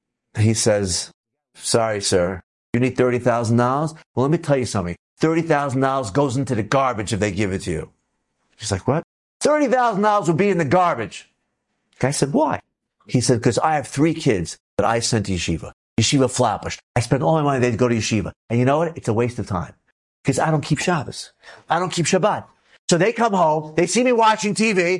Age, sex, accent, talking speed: 50-69, male, American, 210 wpm